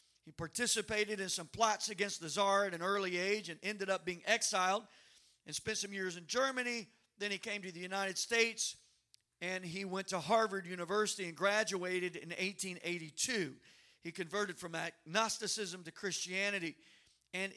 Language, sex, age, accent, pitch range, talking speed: English, male, 50-69, American, 185-230 Hz, 160 wpm